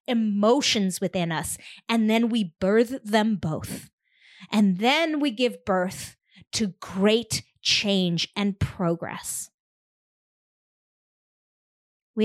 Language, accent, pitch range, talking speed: English, American, 195-230 Hz, 100 wpm